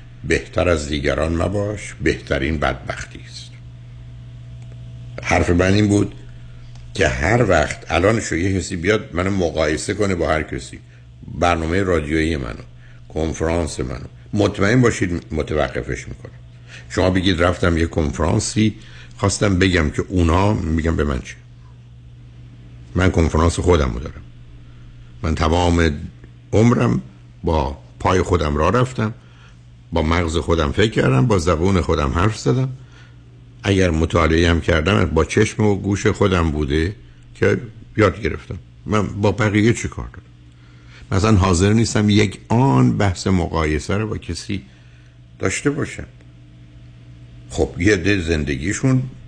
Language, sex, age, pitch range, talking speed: Persian, male, 60-79, 70-105 Hz, 125 wpm